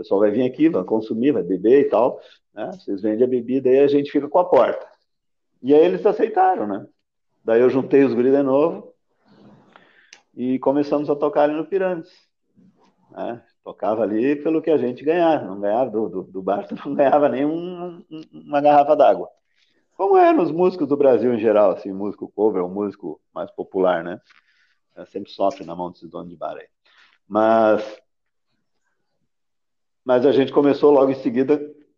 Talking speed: 180 wpm